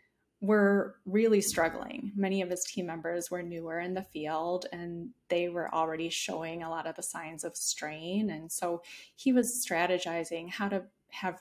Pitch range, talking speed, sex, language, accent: 180-225 Hz, 175 wpm, female, English, American